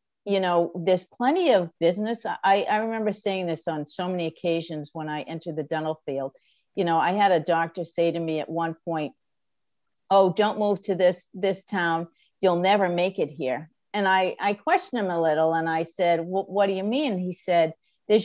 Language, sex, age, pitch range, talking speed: English, female, 50-69, 160-200 Hz, 205 wpm